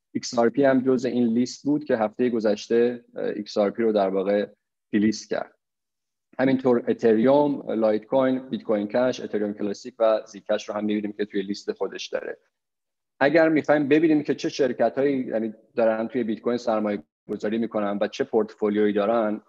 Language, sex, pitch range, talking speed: Persian, male, 105-125 Hz, 160 wpm